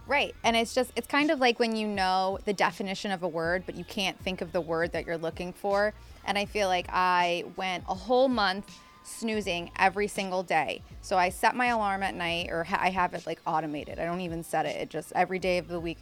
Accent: American